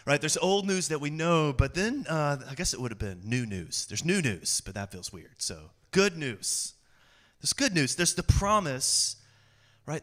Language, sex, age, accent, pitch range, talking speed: English, male, 30-49, American, 115-150 Hz, 210 wpm